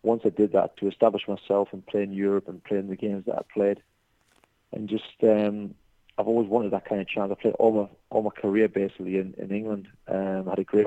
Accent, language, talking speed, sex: British, English, 250 wpm, male